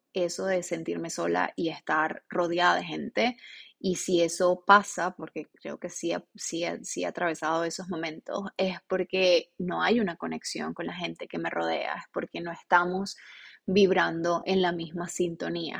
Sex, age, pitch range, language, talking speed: female, 20-39, 170-195 Hz, Spanish, 180 wpm